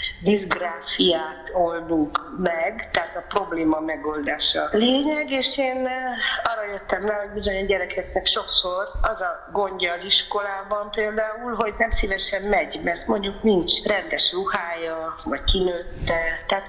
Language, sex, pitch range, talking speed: Hungarian, female, 180-245 Hz, 130 wpm